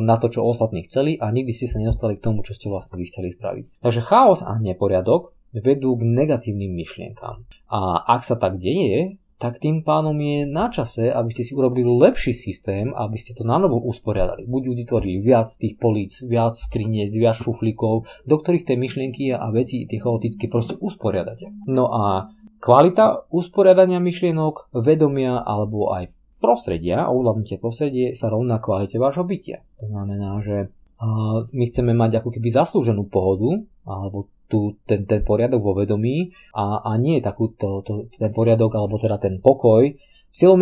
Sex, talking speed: male, 165 wpm